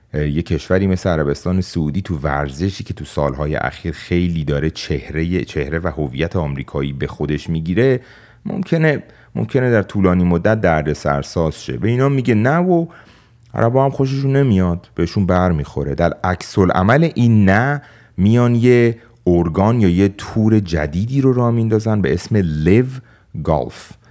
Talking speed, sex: 150 wpm, male